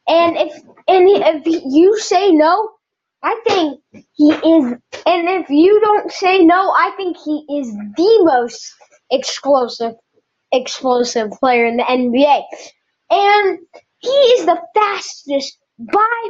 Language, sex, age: English, female, 10-29